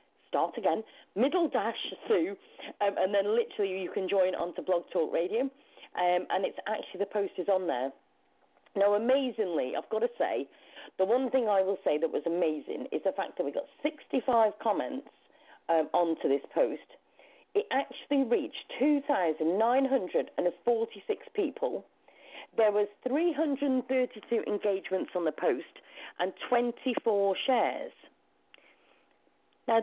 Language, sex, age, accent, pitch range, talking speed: English, female, 40-59, British, 190-285 Hz, 135 wpm